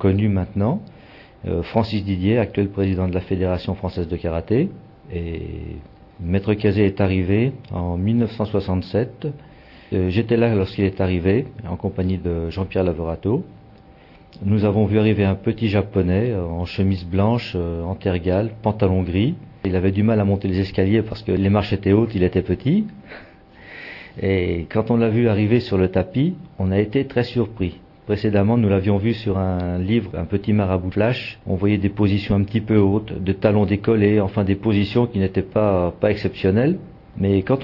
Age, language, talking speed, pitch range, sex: 50-69, Persian, 170 wpm, 95-110 Hz, male